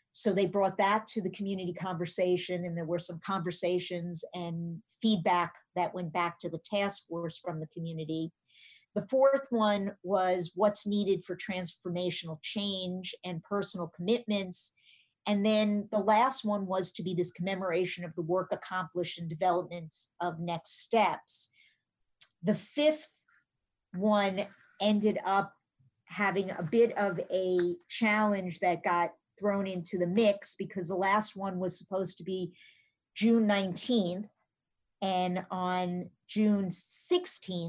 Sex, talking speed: female, 135 wpm